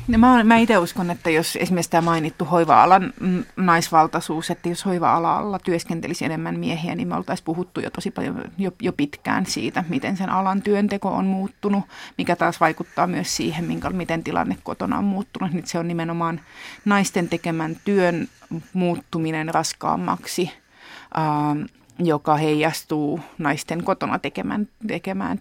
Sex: female